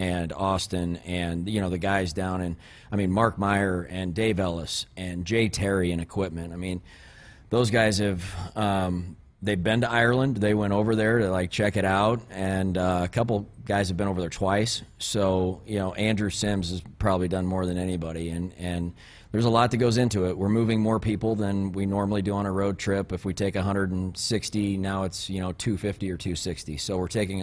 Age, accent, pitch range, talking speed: 30-49, American, 90-105 Hz, 210 wpm